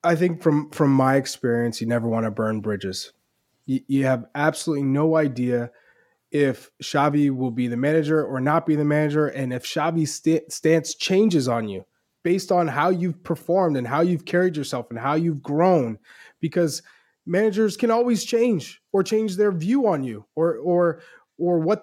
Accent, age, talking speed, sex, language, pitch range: American, 20-39, 180 wpm, male, English, 150-230 Hz